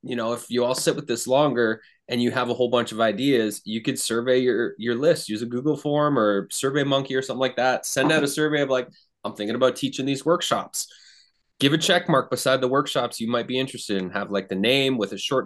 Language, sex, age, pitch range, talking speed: English, male, 20-39, 115-140 Hz, 250 wpm